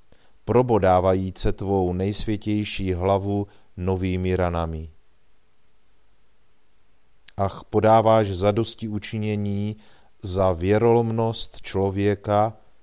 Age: 40-59